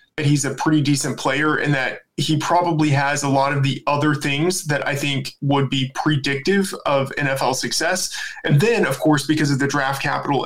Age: 20-39